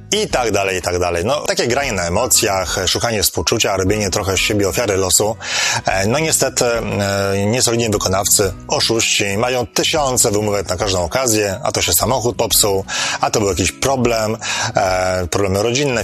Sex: male